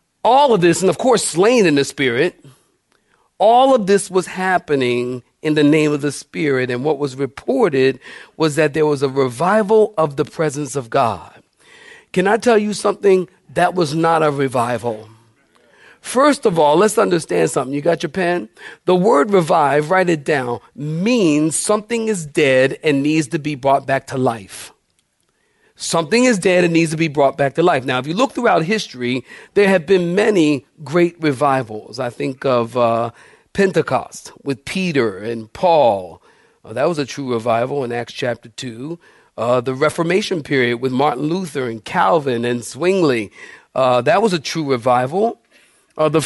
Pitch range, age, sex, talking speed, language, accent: 130-185 Hz, 50-69, male, 175 wpm, English, American